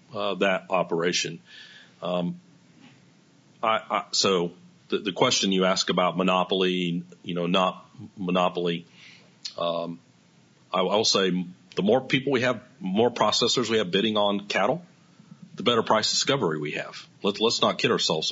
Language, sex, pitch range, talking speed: English, male, 90-115 Hz, 145 wpm